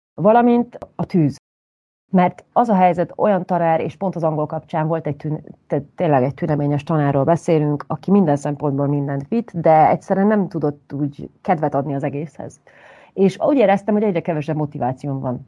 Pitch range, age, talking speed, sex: 145-175 Hz, 30-49, 175 wpm, female